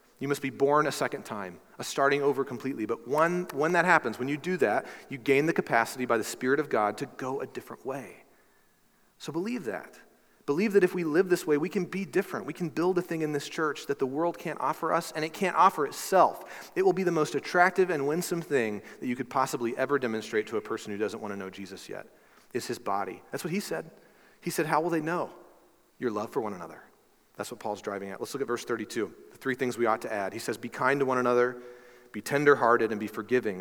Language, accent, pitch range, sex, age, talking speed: English, American, 125-160 Hz, male, 40-59, 250 wpm